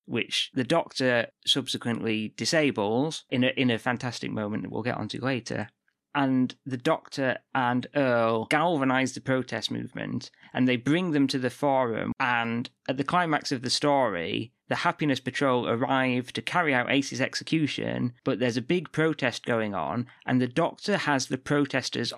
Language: English